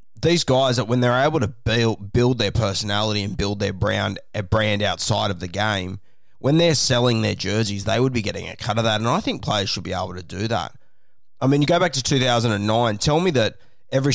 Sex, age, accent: male, 20-39, Australian